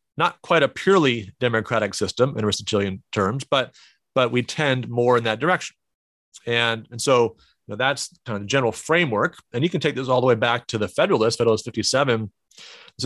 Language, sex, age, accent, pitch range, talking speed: English, male, 40-59, American, 110-130 Hz, 200 wpm